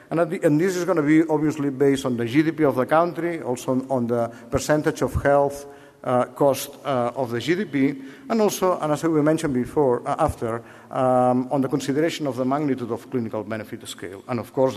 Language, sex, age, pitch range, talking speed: English, male, 50-69, 125-155 Hz, 205 wpm